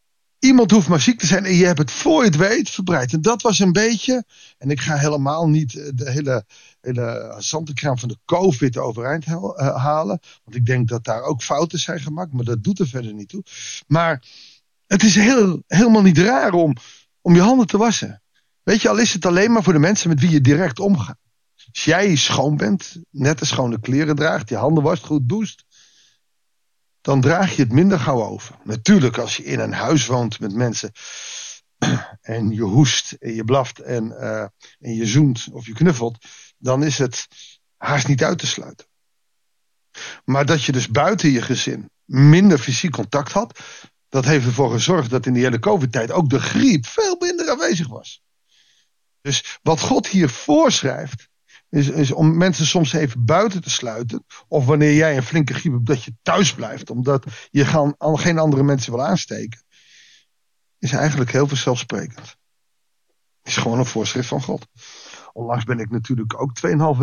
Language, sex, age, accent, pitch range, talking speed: Dutch, male, 50-69, Dutch, 125-170 Hz, 185 wpm